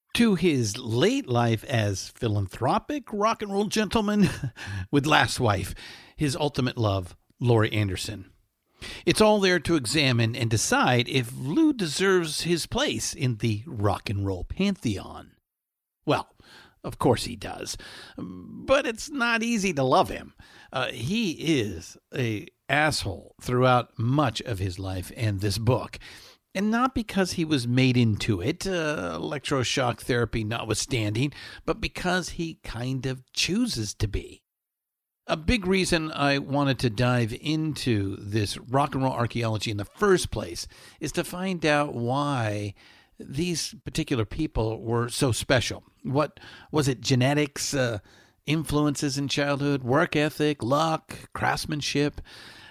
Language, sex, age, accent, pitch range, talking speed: English, male, 50-69, American, 110-160 Hz, 140 wpm